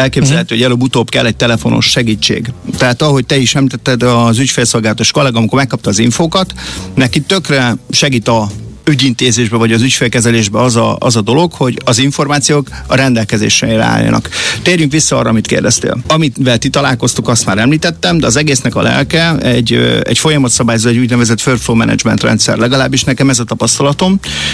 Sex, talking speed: male, 165 wpm